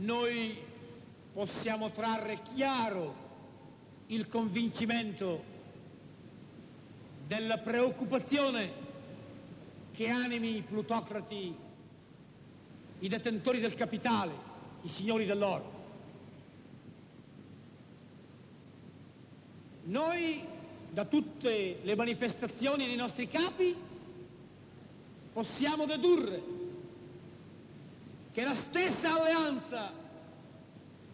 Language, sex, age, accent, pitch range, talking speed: Italian, male, 60-79, native, 195-290 Hz, 65 wpm